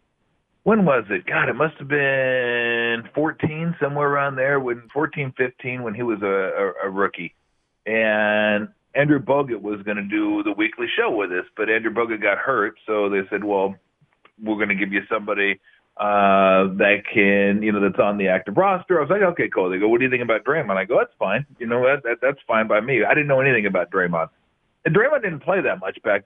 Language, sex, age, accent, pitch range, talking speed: English, male, 40-59, American, 105-155 Hz, 215 wpm